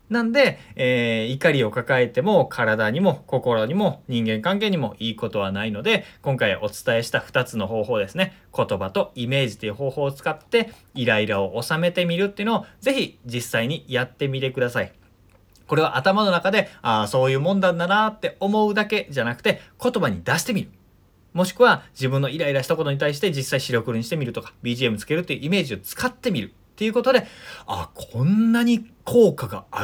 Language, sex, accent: Japanese, male, native